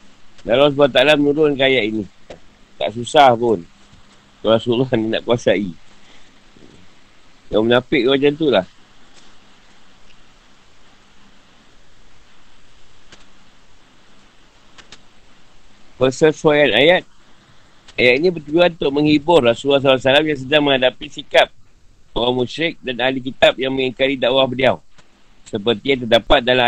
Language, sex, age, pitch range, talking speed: Malay, male, 50-69, 115-145 Hz, 100 wpm